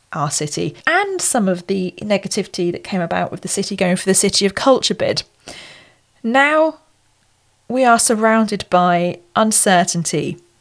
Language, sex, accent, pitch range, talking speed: English, female, British, 175-225 Hz, 145 wpm